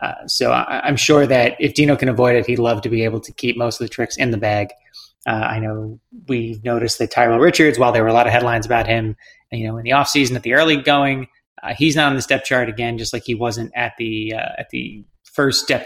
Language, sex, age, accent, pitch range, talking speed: English, male, 30-49, American, 115-135 Hz, 265 wpm